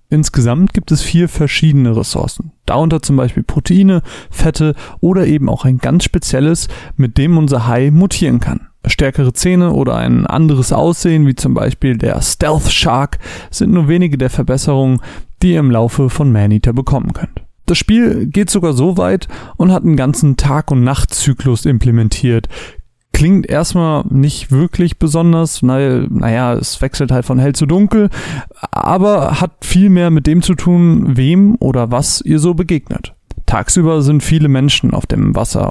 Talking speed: 160 wpm